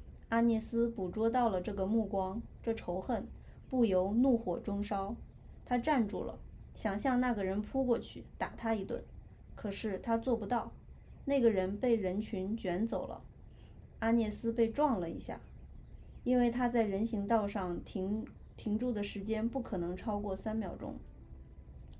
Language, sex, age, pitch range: Chinese, female, 20-39, 190-235 Hz